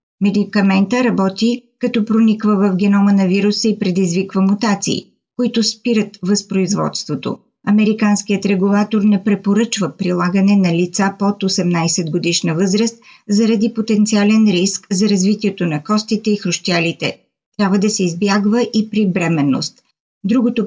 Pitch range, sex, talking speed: 190-220 Hz, female, 120 wpm